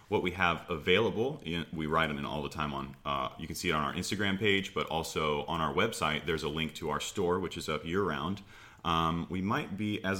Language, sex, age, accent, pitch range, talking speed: English, male, 30-49, American, 80-95 Hz, 255 wpm